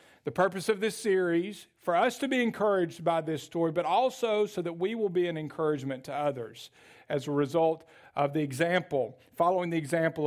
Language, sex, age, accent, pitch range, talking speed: English, male, 50-69, American, 165-220 Hz, 195 wpm